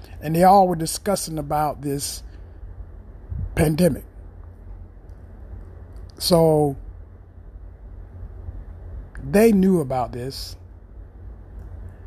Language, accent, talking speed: English, American, 65 wpm